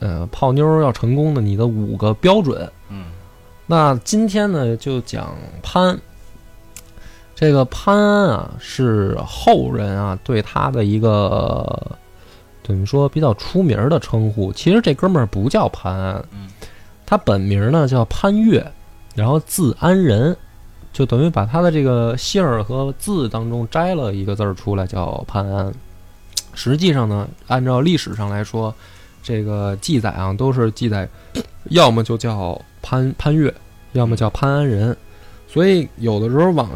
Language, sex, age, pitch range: Chinese, male, 20-39, 100-140 Hz